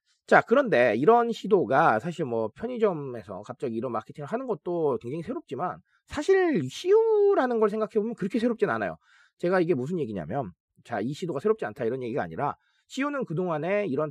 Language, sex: Korean, male